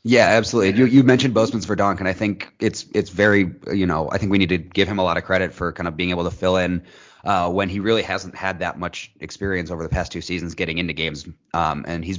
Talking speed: 265 wpm